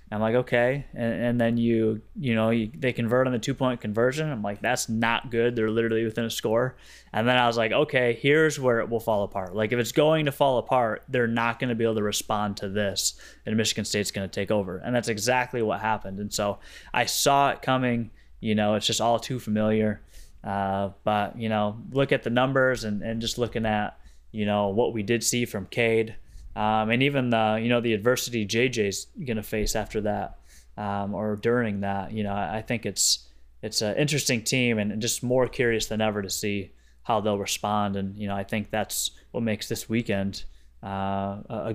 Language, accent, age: English, American, 20-39